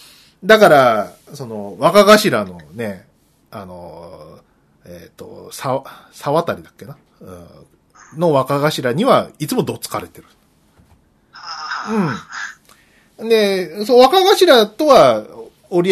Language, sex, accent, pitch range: Japanese, male, native, 110-170 Hz